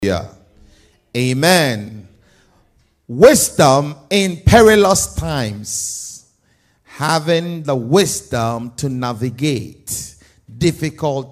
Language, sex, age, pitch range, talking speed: English, male, 50-69, 125-195 Hz, 65 wpm